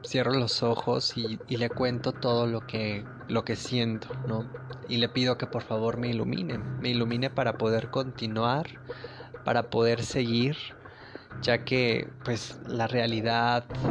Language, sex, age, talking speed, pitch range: Spanish, male, 20-39, 150 wpm, 115-130 Hz